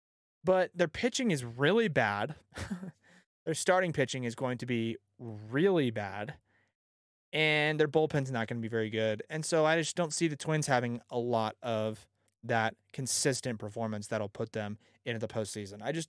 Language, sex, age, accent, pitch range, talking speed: English, male, 20-39, American, 105-145 Hz, 175 wpm